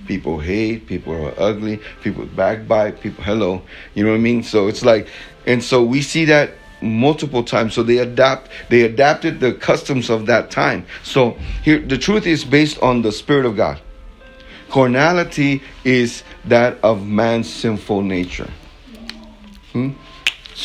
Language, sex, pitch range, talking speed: English, male, 110-140 Hz, 155 wpm